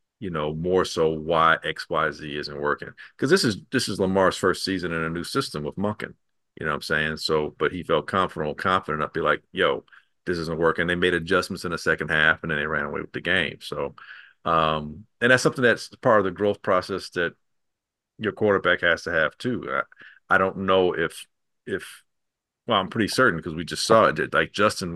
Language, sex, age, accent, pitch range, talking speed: English, male, 40-59, American, 80-95 Hz, 220 wpm